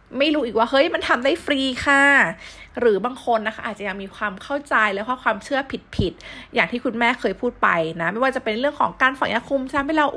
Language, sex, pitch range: Thai, female, 200-265 Hz